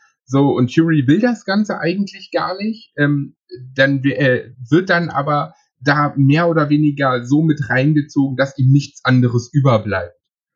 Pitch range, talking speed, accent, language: 135-170 Hz, 160 wpm, German, German